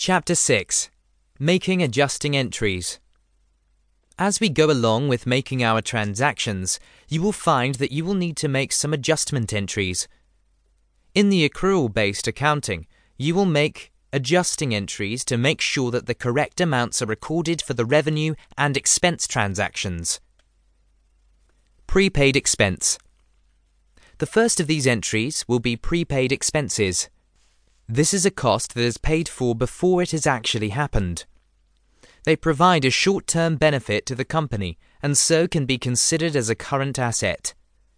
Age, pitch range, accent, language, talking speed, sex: 20-39, 100-155 Hz, British, English, 140 wpm, male